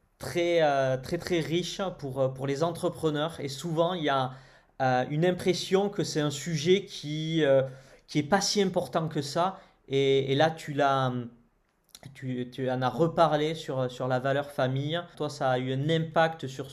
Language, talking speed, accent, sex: French, 185 wpm, French, male